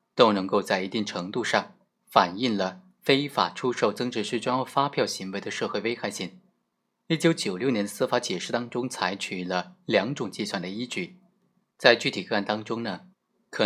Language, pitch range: Chinese, 100-135 Hz